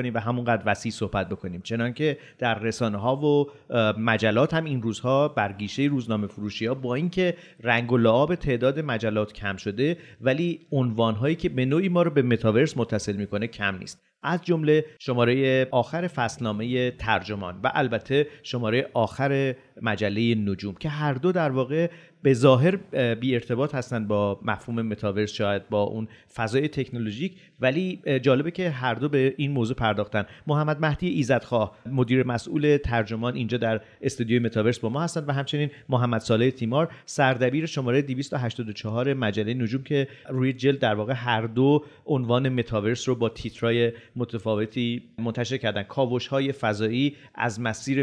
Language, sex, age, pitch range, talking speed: Persian, male, 40-59, 110-140 Hz, 155 wpm